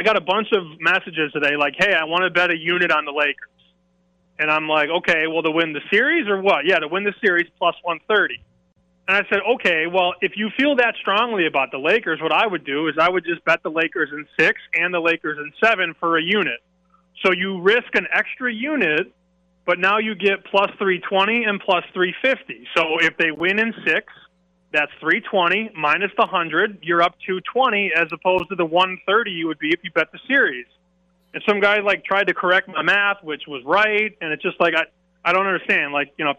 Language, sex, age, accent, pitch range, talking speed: English, male, 30-49, American, 160-195 Hz, 225 wpm